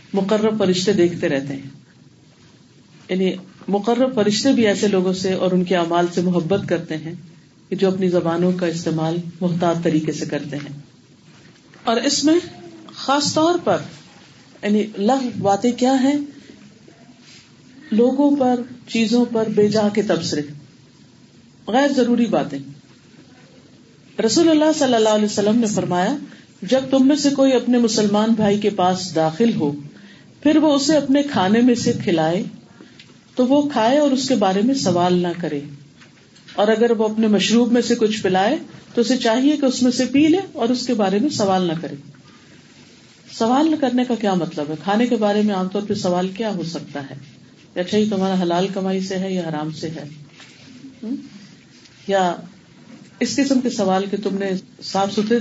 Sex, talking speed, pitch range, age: female, 170 wpm, 175-245 Hz, 50-69